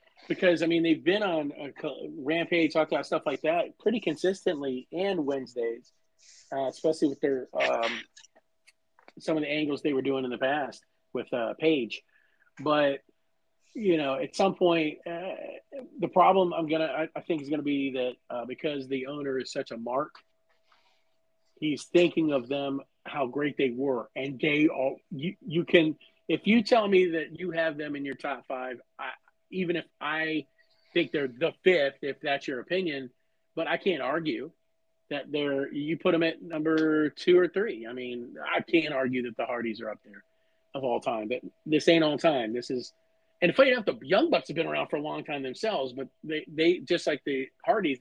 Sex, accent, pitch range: male, American, 140-180 Hz